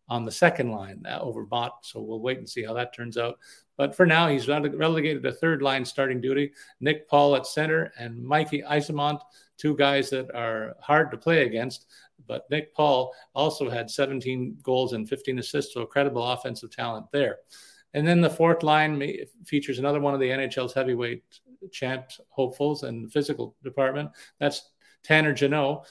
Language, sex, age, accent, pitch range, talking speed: English, male, 50-69, American, 125-145 Hz, 180 wpm